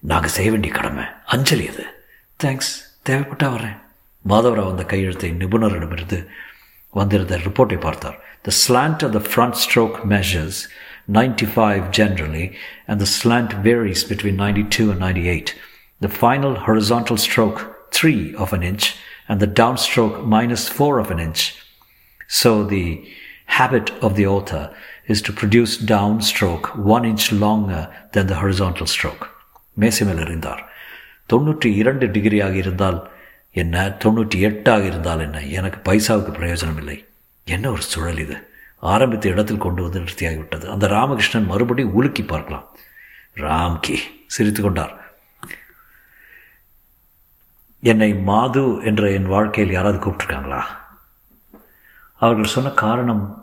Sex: male